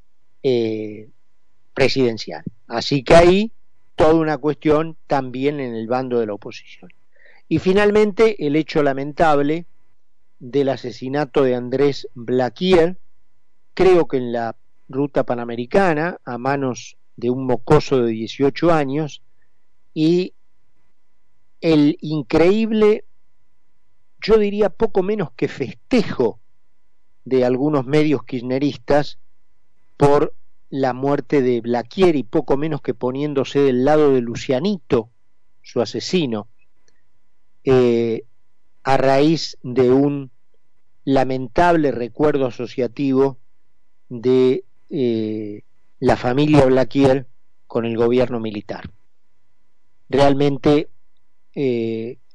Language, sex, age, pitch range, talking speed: Spanish, male, 40-59, 120-150 Hz, 100 wpm